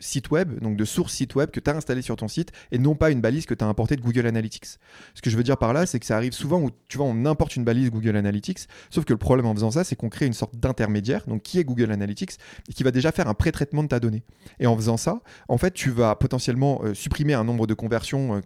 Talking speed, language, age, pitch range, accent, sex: 295 wpm, French, 30-49, 110-135 Hz, French, male